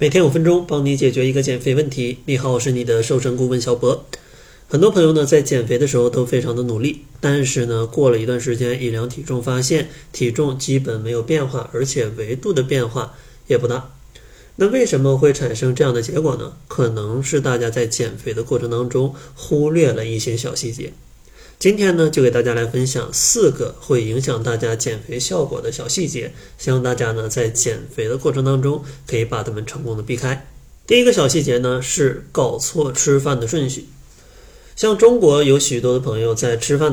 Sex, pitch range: male, 120-145 Hz